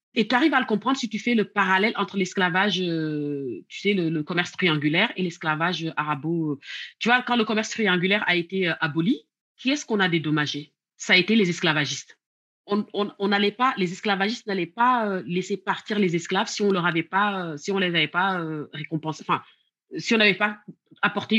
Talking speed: 210 wpm